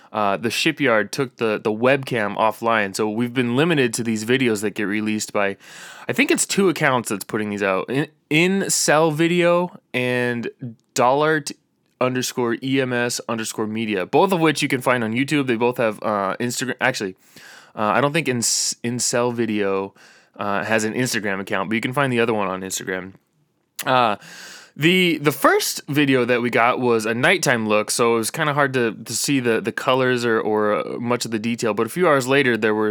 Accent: American